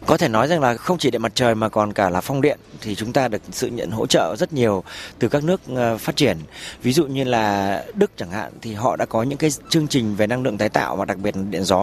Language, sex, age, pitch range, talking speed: Vietnamese, male, 30-49, 105-140 Hz, 285 wpm